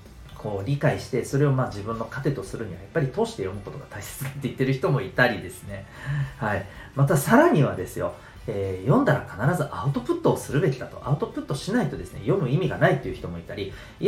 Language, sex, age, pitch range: Japanese, male, 40-59, 115-170 Hz